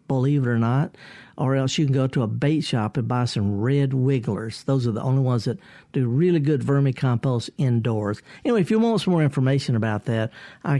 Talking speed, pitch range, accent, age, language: 215 wpm, 130-175 Hz, American, 60-79, English